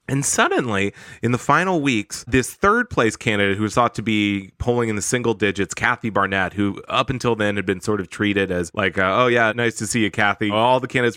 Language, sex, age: English, male, 20-39